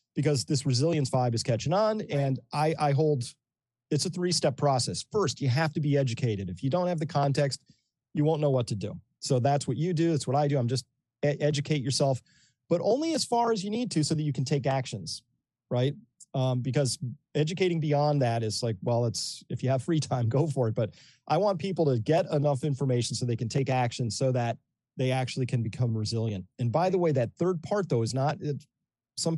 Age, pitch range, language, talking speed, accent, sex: 30-49, 120-150 Hz, English, 225 wpm, American, male